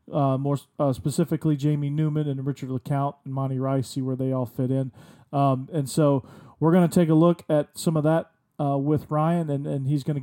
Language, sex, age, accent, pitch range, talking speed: English, male, 40-59, American, 135-155 Hz, 230 wpm